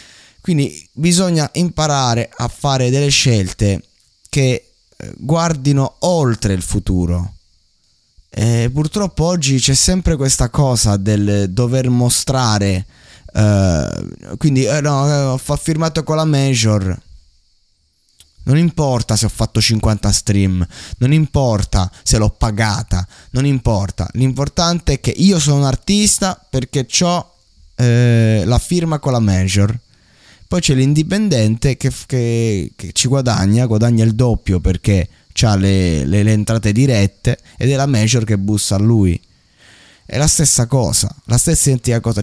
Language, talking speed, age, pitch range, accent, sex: Italian, 130 wpm, 20-39, 100-135 Hz, native, male